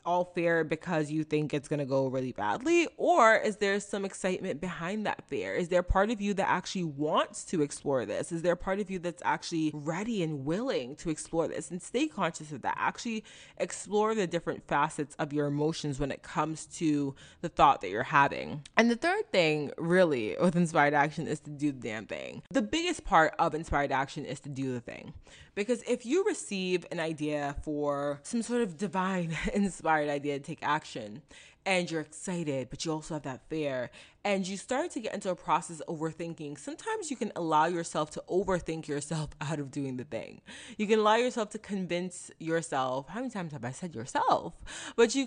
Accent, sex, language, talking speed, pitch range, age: American, female, English, 205 wpm, 155-205 Hz, 20-39